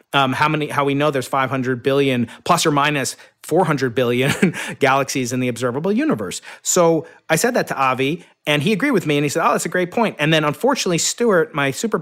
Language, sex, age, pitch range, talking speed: English, male, 30-49, 135-170 Hz, 220 wpm